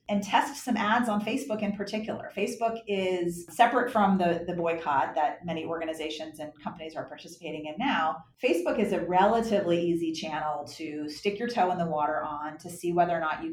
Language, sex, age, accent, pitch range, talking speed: English, female, 30-49, American, 160-215 Hz, 195 wpm